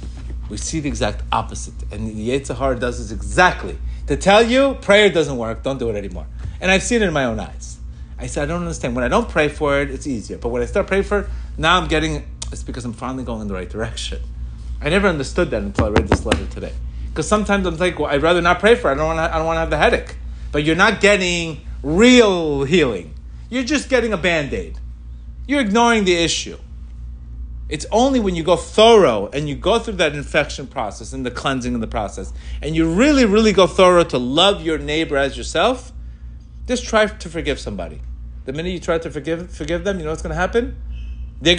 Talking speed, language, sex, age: 225 wpm, English, male, 40-59